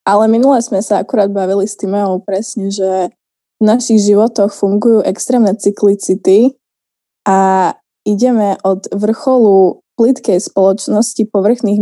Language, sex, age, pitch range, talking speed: Slovak, female, 20-39, 195-225 Hz, 115 wpm